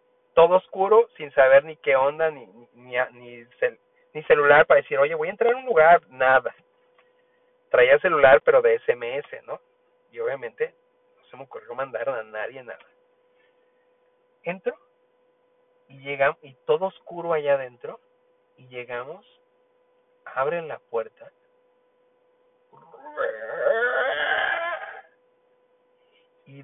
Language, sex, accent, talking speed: Spanish, male, Mexican, 115 wpm